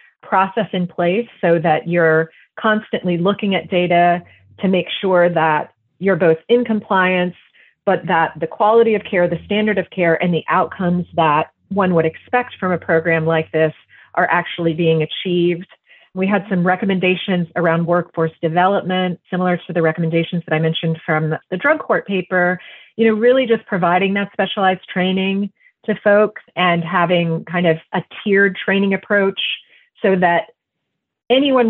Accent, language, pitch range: American, English, 165-195 Hz